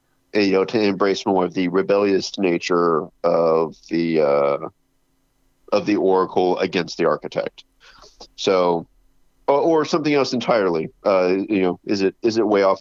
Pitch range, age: 90-105 Hz, 40-59